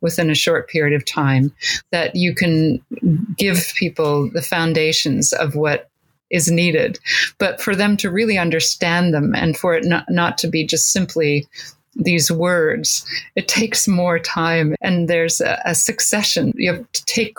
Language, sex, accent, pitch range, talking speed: English, female, American, 155-180 Hz, 165 wpm